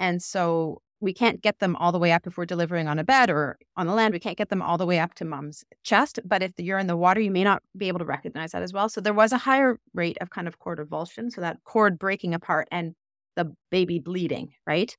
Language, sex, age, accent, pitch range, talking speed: English, female, 30-49, American, 160-210 Hz, 270 wpm